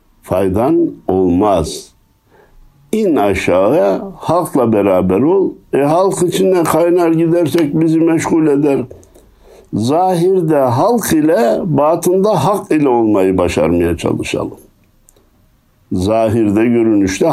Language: Turkish